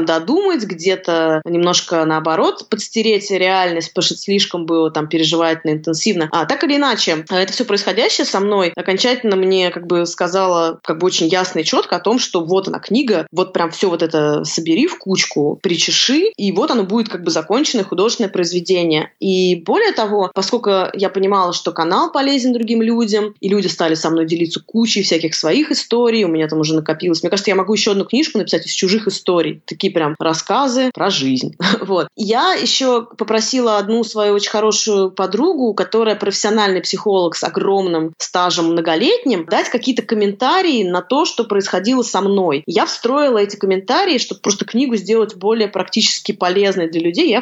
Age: 20-39